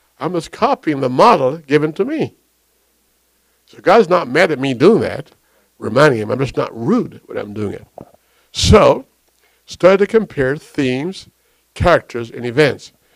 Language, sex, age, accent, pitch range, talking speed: English, male, 60-79, American, 115-155 Hz, 155 wpm